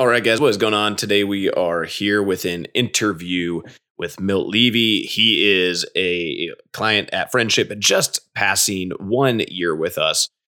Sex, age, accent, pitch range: male, 20-39, American, 90-105 Hz